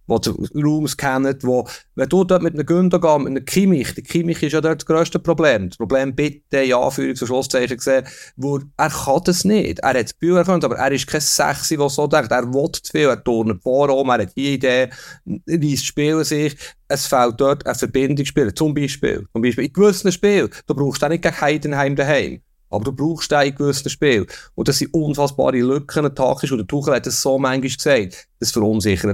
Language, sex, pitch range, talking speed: German, male, 125-155 Hz, 215 wpm